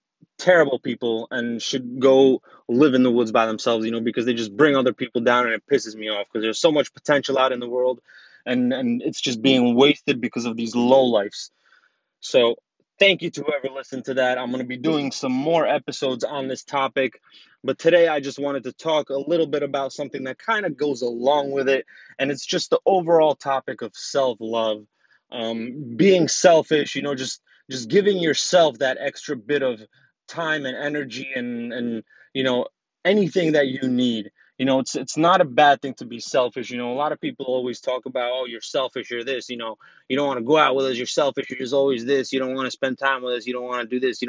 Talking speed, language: 230 wpm, English